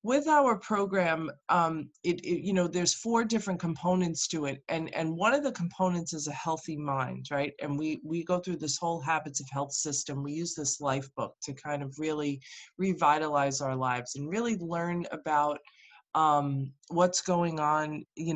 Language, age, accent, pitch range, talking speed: English, 20-39, American, 145-180 Hz, 185 wpm